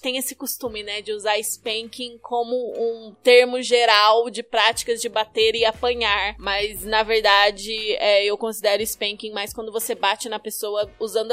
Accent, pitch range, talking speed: Brazilian, 210-260 Hz, 165 wpm